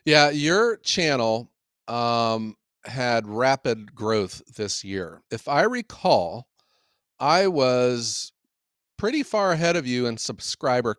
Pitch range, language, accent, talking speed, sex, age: 105-150 Hz, English, American, 115 wpm, male, 40-59